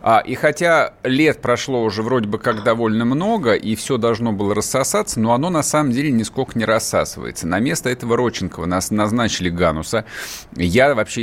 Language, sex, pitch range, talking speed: Russian, male, 95-130 Hz, 175 wpm